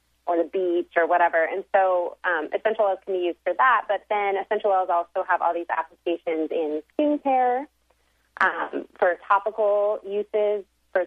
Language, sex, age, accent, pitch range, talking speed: English, female, 30-49, American, 165-195 Hz, 170 wpm